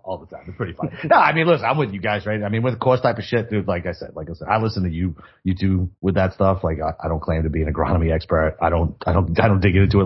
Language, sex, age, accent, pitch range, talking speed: English, male, 30-49, American, 90-110 Hz, 345 wpm